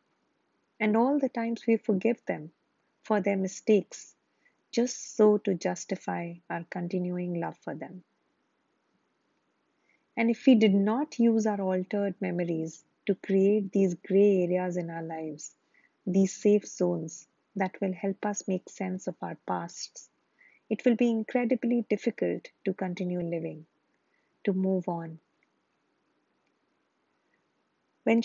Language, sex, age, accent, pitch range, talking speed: English, female, 30-49, Indian, 180-215 Hz, 125 wpm